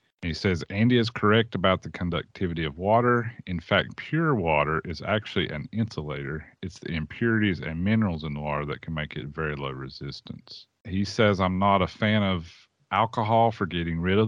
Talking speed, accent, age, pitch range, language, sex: 190 wpm, American, 40-59, 80-105 Hz, English, male